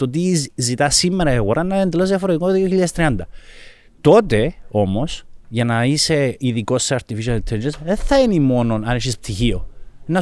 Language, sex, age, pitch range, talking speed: Greek, male, 30-49, 115-170 Hz, 170 wpm